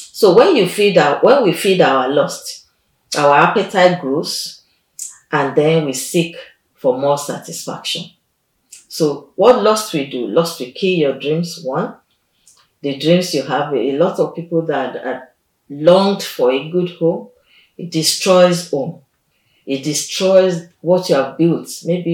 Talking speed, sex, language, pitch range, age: 150 wpm, female, English, 145-190 Hz, 40-59